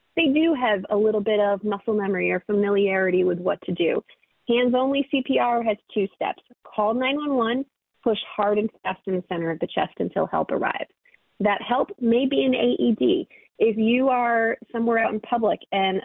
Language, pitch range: English, 200-240 Hz